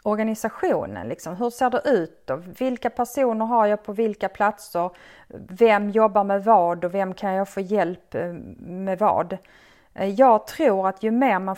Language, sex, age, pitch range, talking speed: Swedish, female, 30-49, 185-235 Hz, 155 wpm